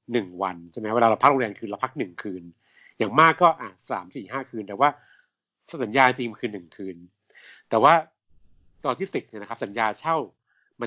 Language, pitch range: Thai, 105-140 Hz